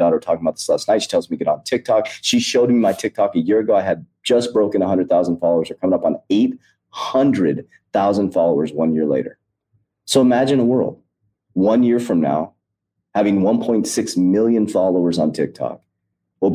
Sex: male